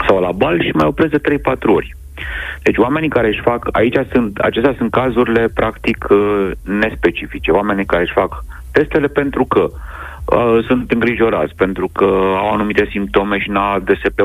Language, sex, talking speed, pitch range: Romanian, male, 160 wpm, 80-100 Hz